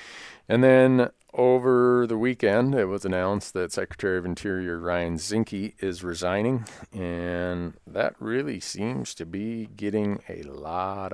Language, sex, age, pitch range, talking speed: English, male, 40-59, 80-100 Hz, 135 wpm